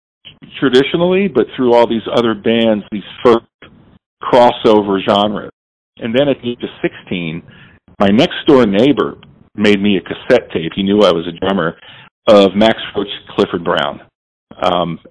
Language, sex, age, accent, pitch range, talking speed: English, male, 50-69, American, 95-115 Hz, 155 wpm